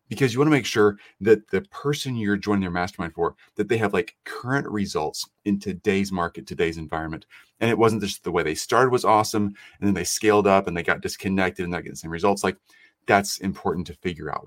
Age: 30-49